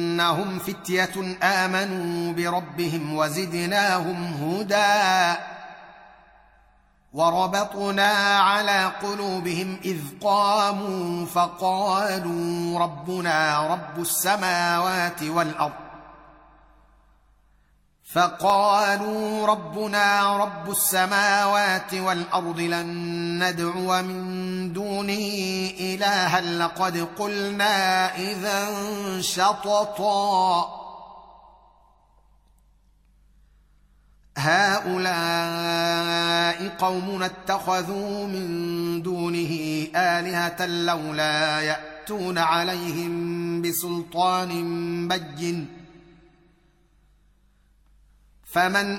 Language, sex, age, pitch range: Arabic, male, 30-49, 170-195 Hz